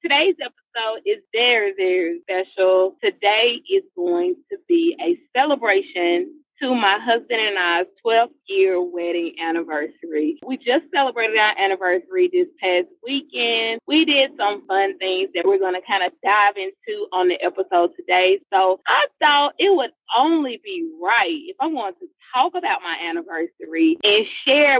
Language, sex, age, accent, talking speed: English, female, 20-39, American, 155 wpm